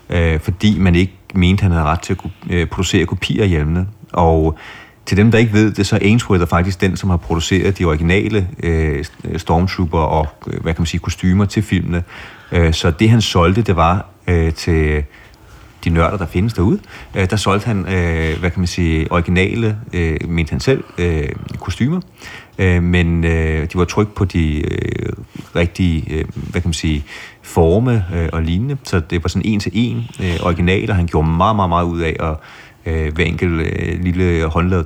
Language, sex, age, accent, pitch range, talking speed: Danish, male, 30-49, native, 85-100 Hz, 175 wpm